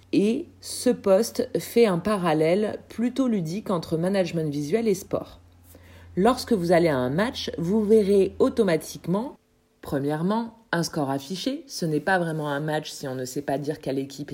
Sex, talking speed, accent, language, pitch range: female, 165 wpm, French, French, 150-215 Hz